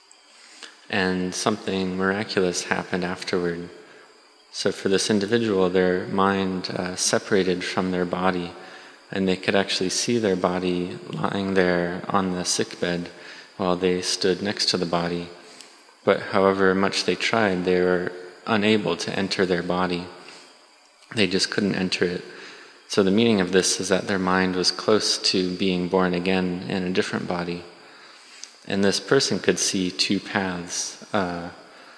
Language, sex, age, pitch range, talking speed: English, male, 20-39, 90-95 Hz, 150 wpm